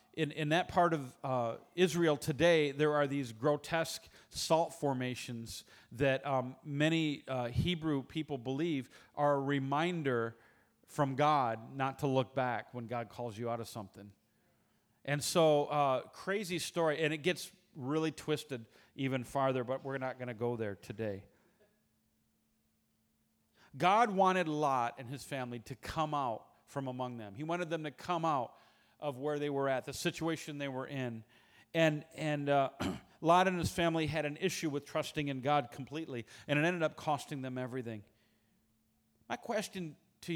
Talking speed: 165 wpm